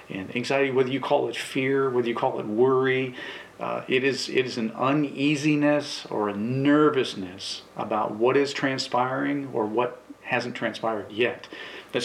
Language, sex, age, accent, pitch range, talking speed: English, male, 40-59, American, 115-135 Hz, 160 wpm